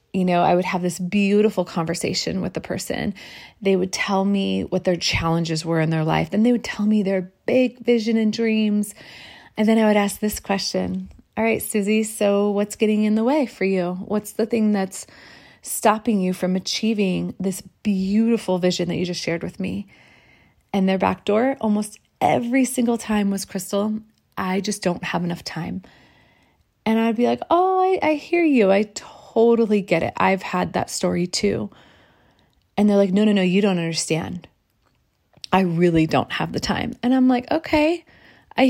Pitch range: 180-220 Hz